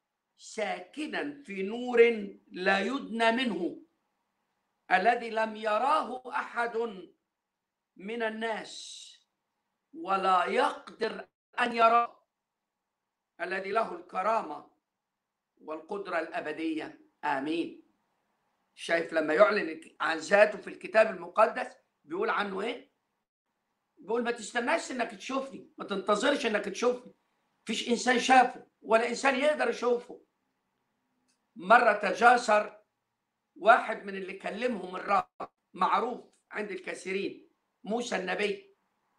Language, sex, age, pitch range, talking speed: Arabic, male, 50-69, 205-255 Hz, 95 wpm